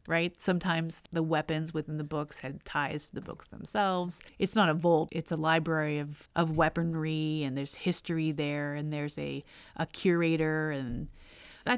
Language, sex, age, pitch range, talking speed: English, female, 30-49, 155-175 Hz, 175 wpm